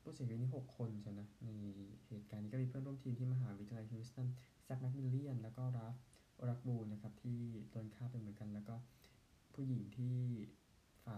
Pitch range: 105-125 Hz